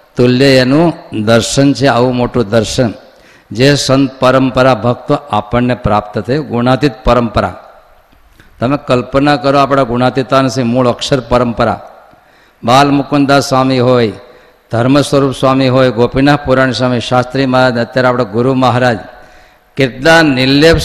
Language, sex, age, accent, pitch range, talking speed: Gujarati, male, 50-69, native, 120-145 Hz, 125 wpm